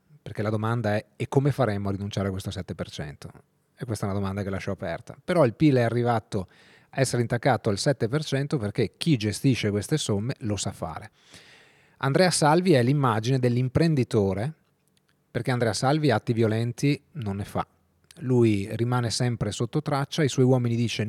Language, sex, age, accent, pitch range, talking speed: Italian, male, 30-49, native, 105-135 Hz, 170 wpm